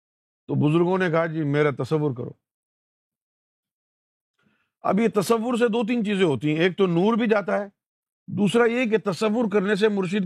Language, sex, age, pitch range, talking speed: Urdu, male, 50-69, 130-180 Hz, 175 wpm